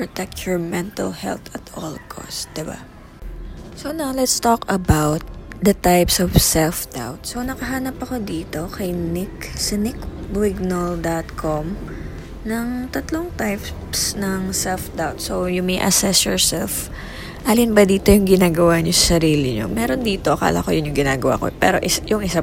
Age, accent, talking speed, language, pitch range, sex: 20-39, native, 150 wpm, Filipino, 160-200 Hz, female